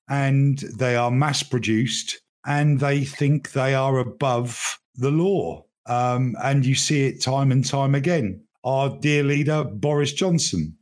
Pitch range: 120-145 Hz